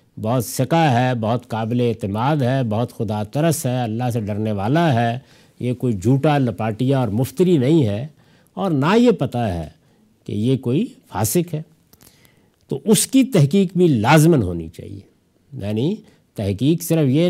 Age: 50-69